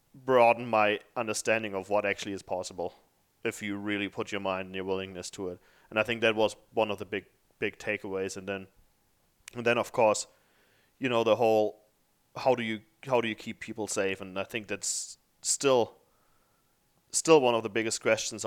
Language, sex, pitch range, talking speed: English, male, 105-120 Hz, 195 wpm